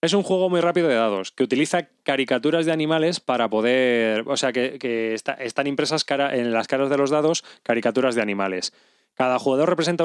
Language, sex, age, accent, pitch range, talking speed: Spanish, male, 20-39, Spanish, 130-165 Hz, 205 wpm